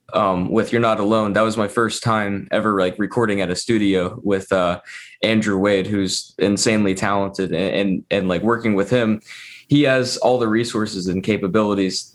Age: 20-39